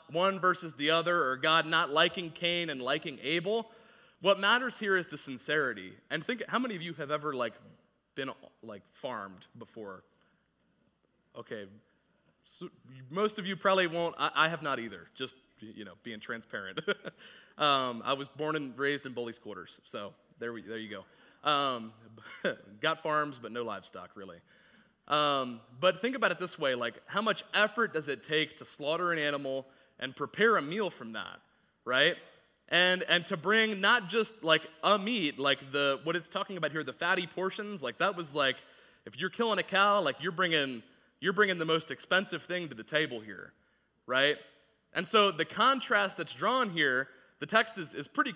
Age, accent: 30-49, American